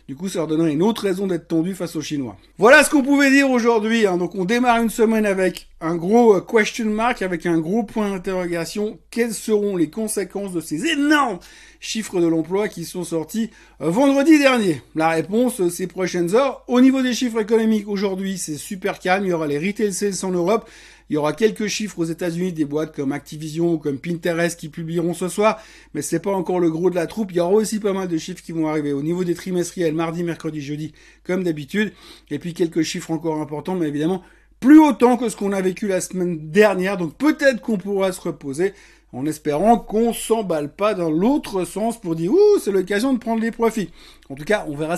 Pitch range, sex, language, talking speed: 165-225 Hz, male, French, 220 wpm